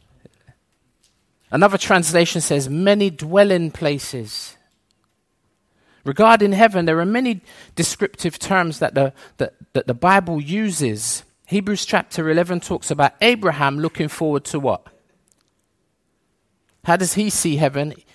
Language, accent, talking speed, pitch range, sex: English, British, 110 wpm, 135-190 Hz, male